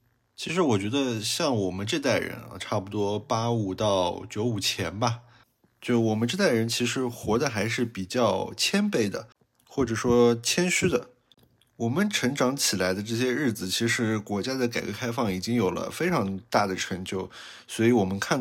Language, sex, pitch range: Chinese, male, 105-125 Hz